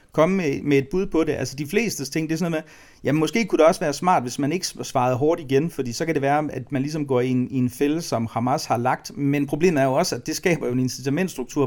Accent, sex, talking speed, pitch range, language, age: native, male, 285 wpm, 130-165 Hz, Danish, 40-59